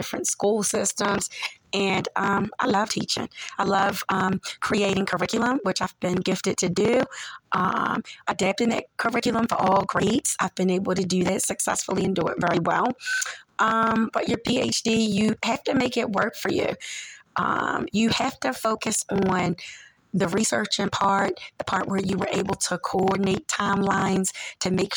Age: 30-49